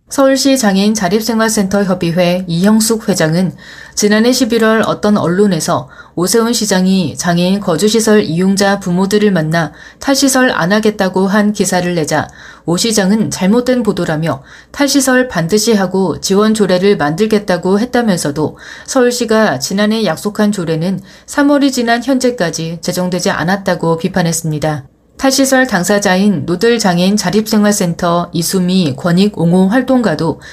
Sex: female